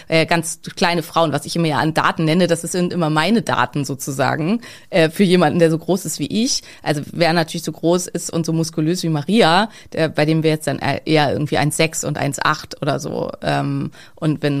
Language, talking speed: German, 205 wpm